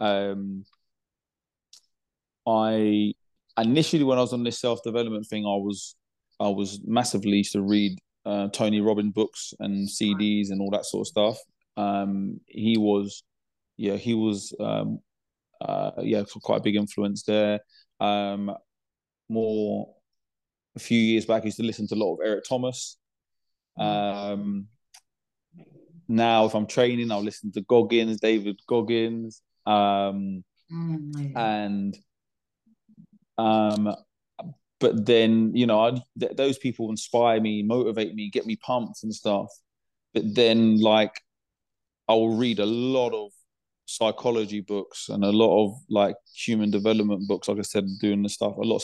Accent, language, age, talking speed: British, English, 20-39, 145 wpm